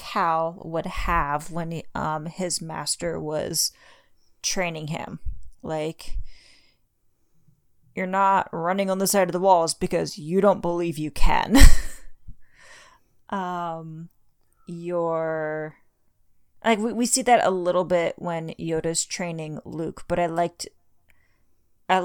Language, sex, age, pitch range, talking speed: English, female, 30-49, 160-185 Hz, 120 wpm